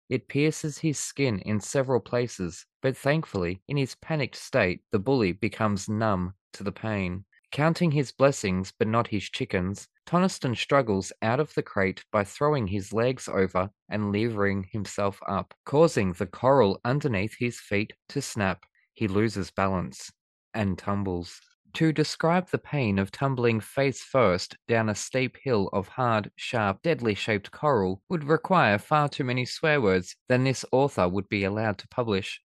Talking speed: 160 wpm